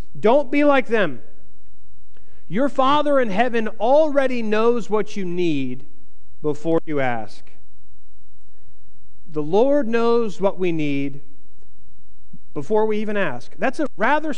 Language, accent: English, American